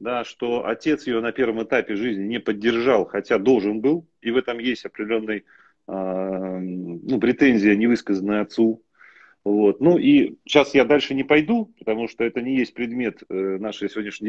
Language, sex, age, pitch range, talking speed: Russian, male, 30-49, 105-135 Hz, 165 wpm